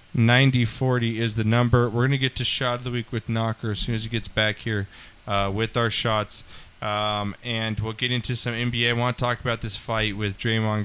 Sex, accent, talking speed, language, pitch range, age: male, American, 230 wpm, English, 95-115 Hz, 20-39